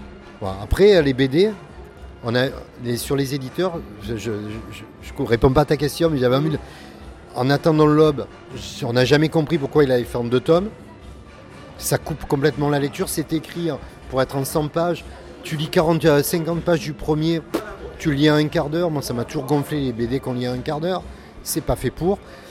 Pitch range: 125-160 Hz